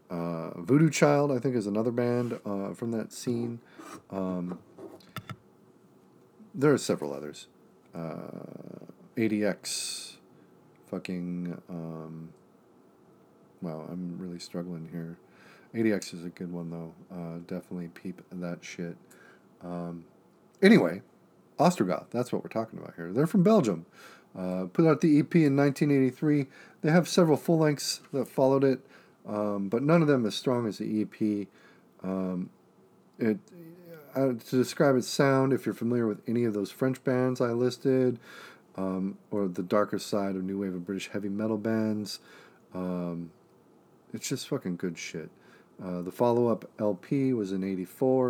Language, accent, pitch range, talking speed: English, American, 90-130 Hz, 145 wpm